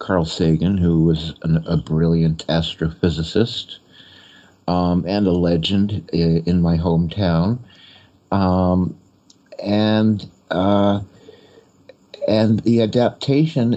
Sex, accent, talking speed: male, American, 90 wpm